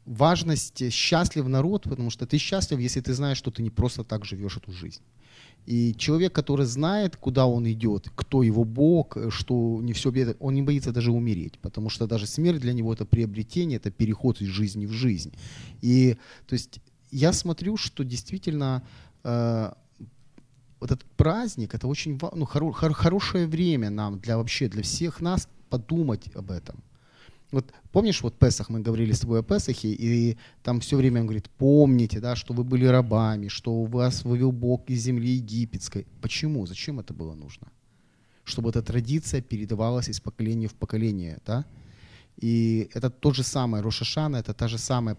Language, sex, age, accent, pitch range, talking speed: Ukrainian, male, 30-49, native, 110-135 Hz, 175 wpm